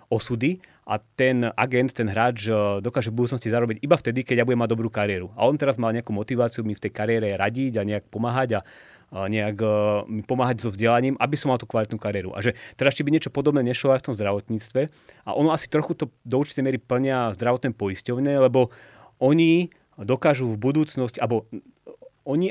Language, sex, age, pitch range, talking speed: Slovak, male, 30-49, 110-135 Hz, 195 wpm